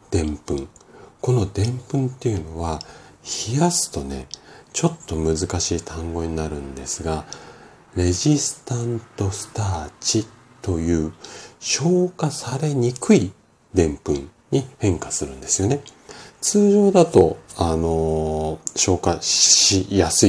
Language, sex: Japanese, male